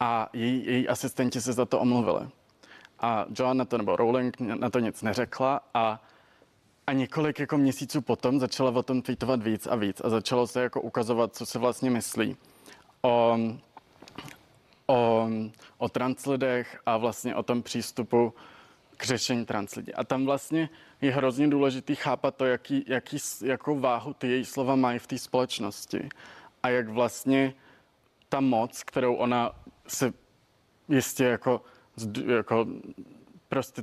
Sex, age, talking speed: male, 20-39, 145 wpm